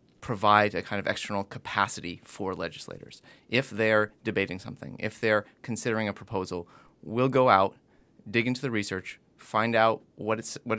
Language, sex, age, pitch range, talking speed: English, male, 30-49, 100-115 Hz, 155 wpm